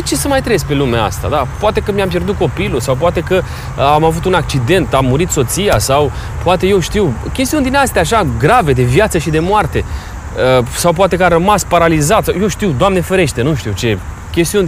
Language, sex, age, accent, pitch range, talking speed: Romanian, male, 30-49, native, 115-180 Hz, 215 wpm